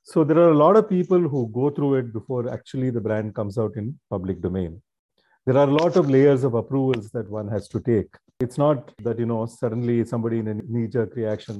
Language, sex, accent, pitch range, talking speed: English, male, Indian, 115-155 Hz, 230 wpm